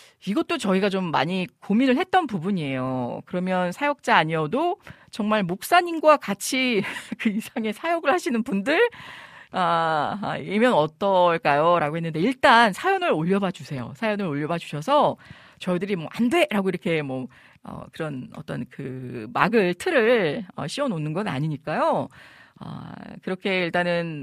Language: Korean